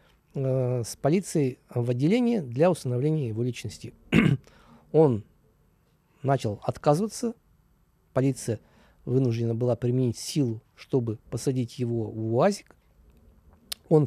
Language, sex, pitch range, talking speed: Russian, male, 120-155 Hz, 95 wpm